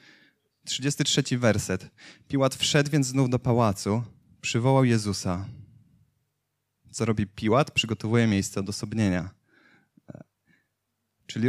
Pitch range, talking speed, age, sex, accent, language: 105-130 Hz, 90 wpm, 20-39, male, native, Polish